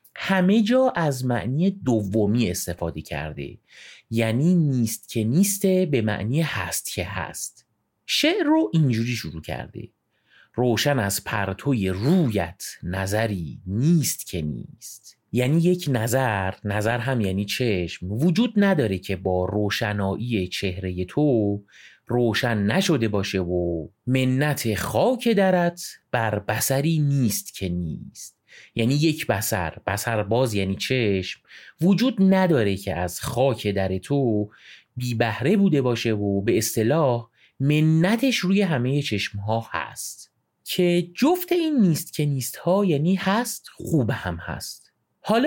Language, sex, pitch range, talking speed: Persian, male, 100-170 Hz, 125 wpm